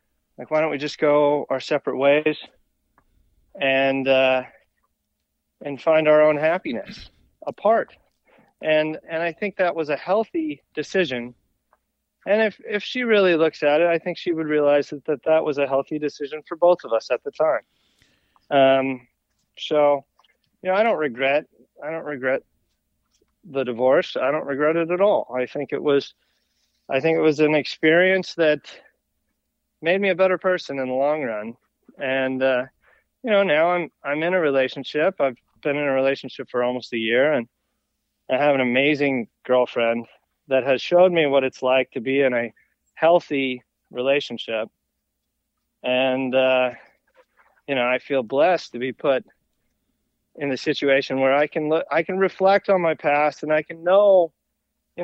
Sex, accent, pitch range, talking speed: male, American, 130-165 Hz, 170 wpm